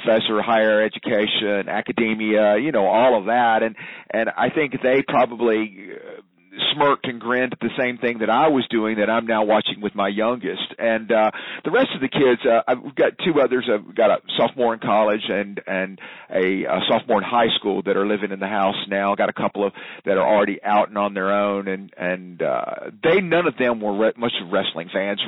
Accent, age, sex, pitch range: American, 50-69, male, 105-125 Hz